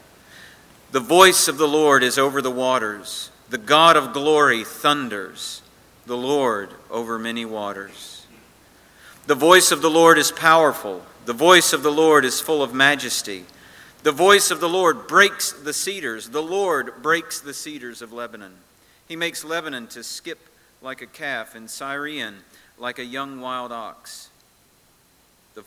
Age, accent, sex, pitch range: 50-69, American, male, 120-150 Hz